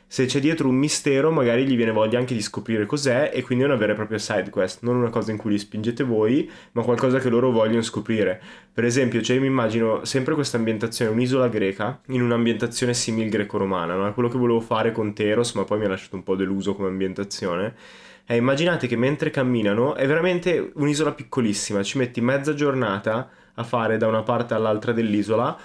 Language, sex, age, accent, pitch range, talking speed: Italian, male, 20-39, native, 110-135 Hz, 210 wpm